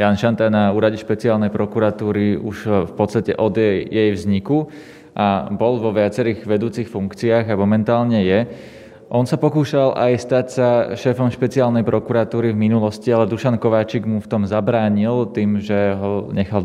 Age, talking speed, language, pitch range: 20-39, 160 wpm, Slovak, 100-120 Hz